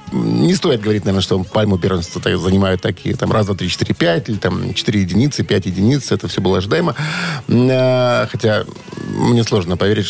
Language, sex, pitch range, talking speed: Russian, male, 100-140 Hz, 170 wpm